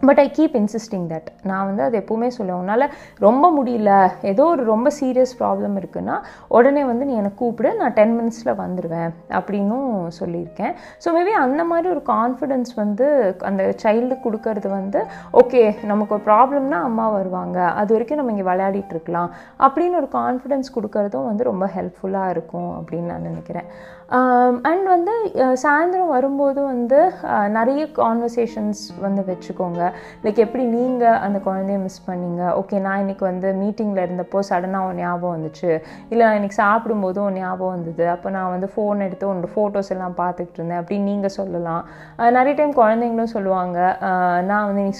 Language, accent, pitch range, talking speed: Tamil, native, 185-240 Hz, 150 wpm